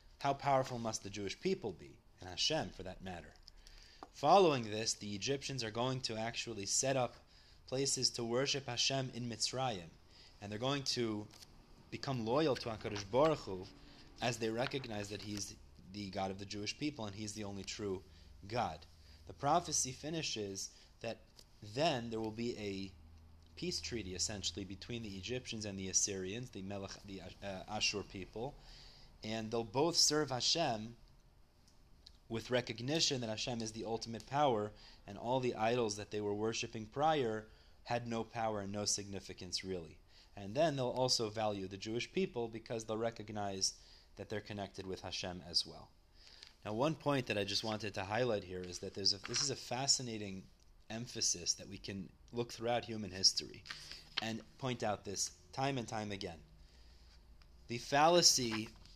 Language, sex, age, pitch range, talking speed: English, male, 30-49, 95-120 Hz, 165 wpm